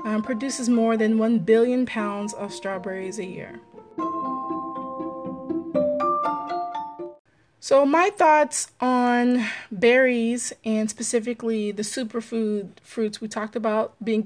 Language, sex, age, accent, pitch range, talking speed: English, female, 20-39, American, 200-250 Hz, 105 wpm